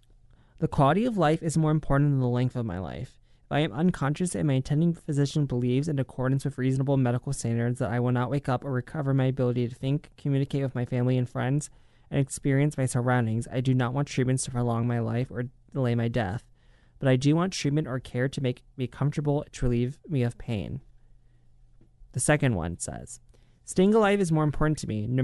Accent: American